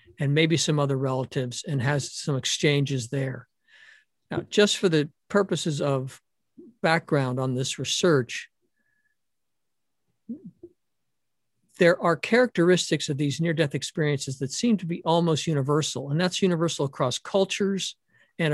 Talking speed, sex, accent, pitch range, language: 125 wpm, male, American, 140-180 Hz, English